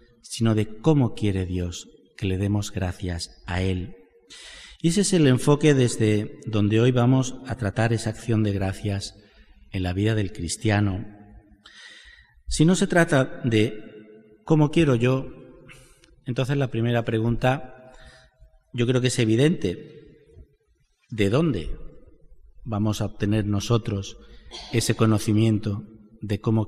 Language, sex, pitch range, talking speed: Spanish, male, 100-130 Hz, 130 wpm